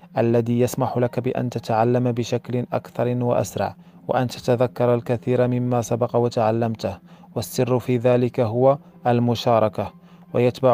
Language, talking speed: Arabic, 110 wpm